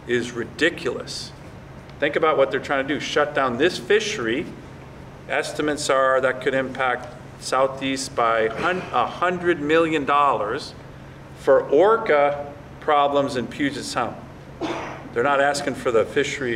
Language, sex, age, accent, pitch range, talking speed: English, male, 40-59, American, 105-135 Hz, 130 wpm